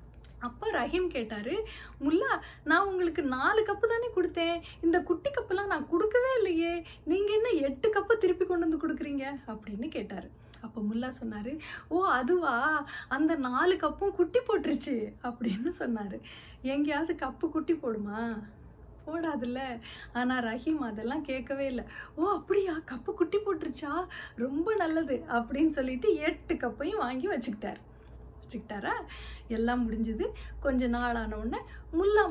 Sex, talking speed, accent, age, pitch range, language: female, 125 wpm, native, 30-49, 230-340 Hz, Tamil